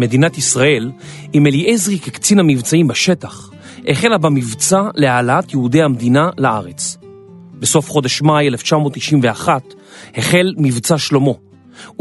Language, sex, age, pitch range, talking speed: Hebrew, male, 40-59, 130-180 Hz, 100 wpm